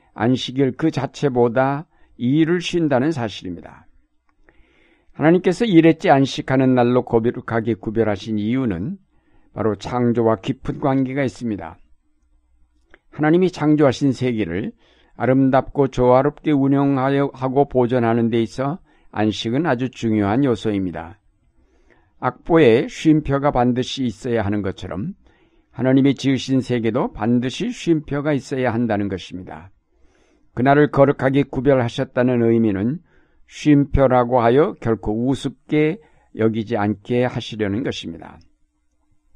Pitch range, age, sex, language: 115-145 Hz, 50-69, male, Korean